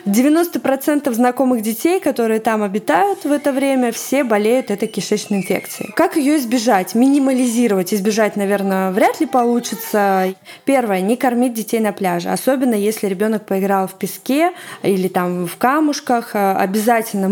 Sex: female